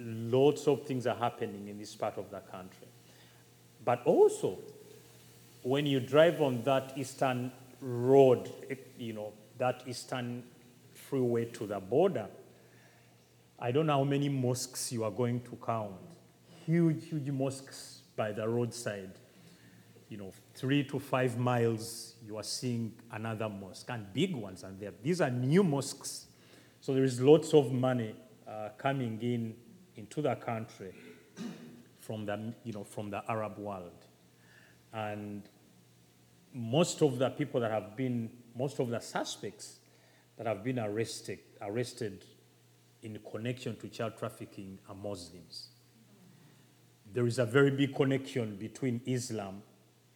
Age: 30-49